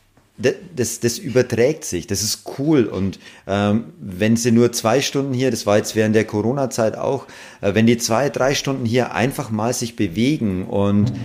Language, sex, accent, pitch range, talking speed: German, male, German, 100-120 Hz, 180 wpm